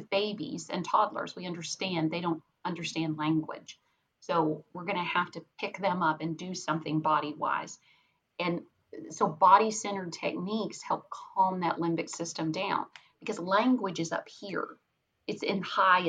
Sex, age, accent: female, 40-59, American